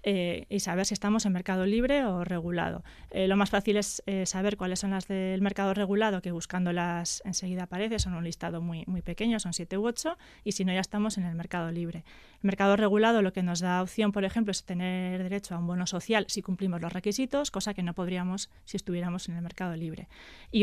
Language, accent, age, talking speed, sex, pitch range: Spanish, Spanish, 20-39, 225 wpm, female, 180-205 Hz